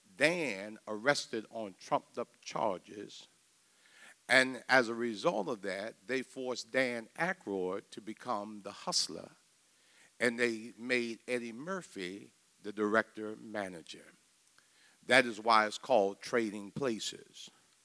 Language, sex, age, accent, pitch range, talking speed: English, male, 60-79, American, 110-145 Hz, 110 wpm